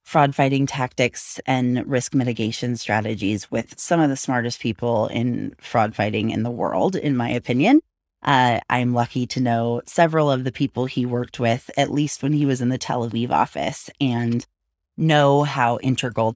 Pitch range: 125-170 Hz